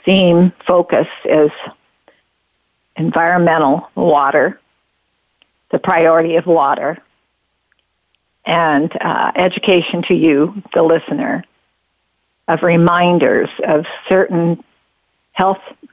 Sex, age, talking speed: female, 50-69, 80 wpm